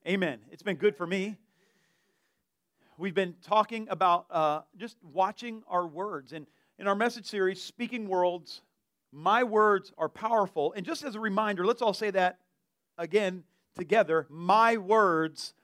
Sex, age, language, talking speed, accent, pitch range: male, 40-59, English, 150 wpm, American, 160-215 Hz